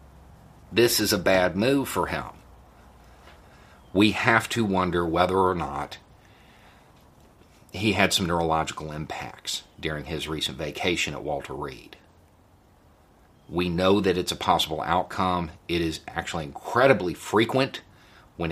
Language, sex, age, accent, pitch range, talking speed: English, male, 40-59, American, 85-105 Hz, 125 wpm